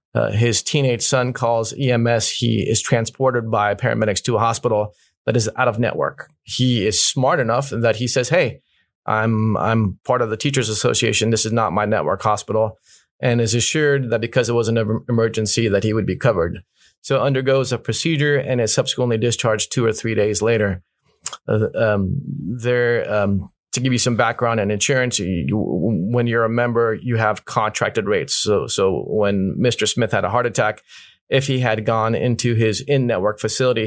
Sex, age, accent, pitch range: male, 30-49, American, 110-125 Hz